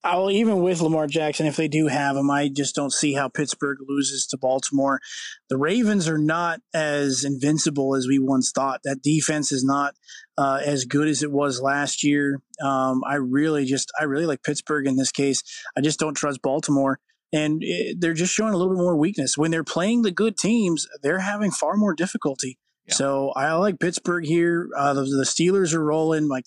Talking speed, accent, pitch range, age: 205 wpm, American, 140-160 Hz, 20-39